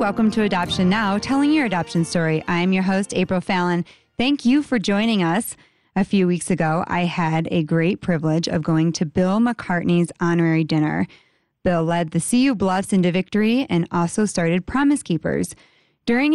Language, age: English, 20-39